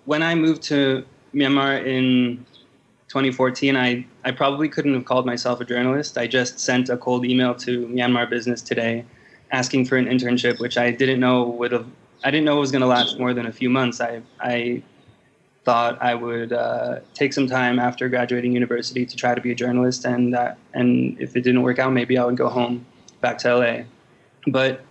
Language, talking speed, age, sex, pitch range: English, 200 wpm, 20-39, male, 120-130 Hz